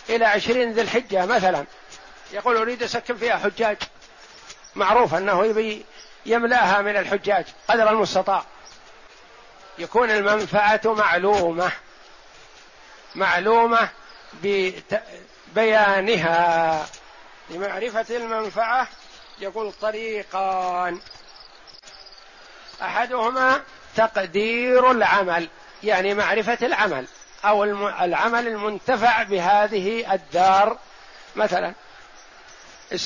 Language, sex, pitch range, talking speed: Arabic, male, 200-230 Hz, 70 wpm